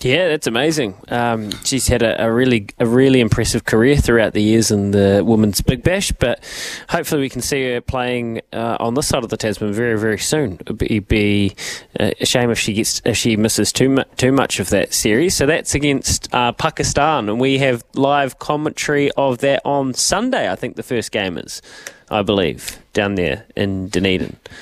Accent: Australian